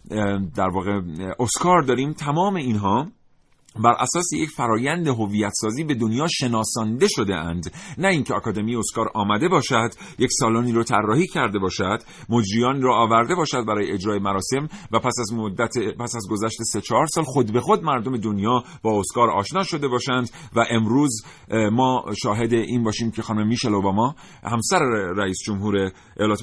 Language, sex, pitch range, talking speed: Persian, male, 95-125 Hz, 155 wpm